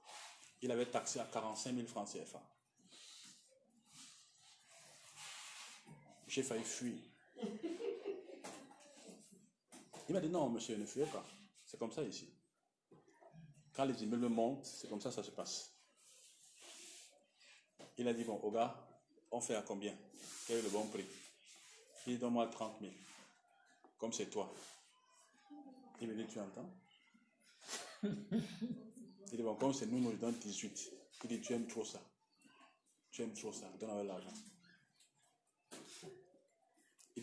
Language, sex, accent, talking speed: French, male, French, 135 wpm